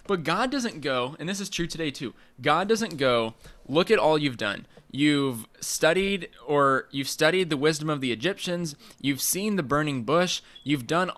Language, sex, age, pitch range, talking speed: English, male, 10-29, 130-160 Hz, 190 wpm